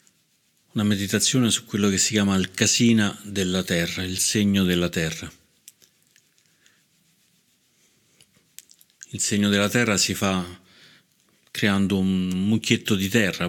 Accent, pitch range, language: native, 90-100 Hz, Italian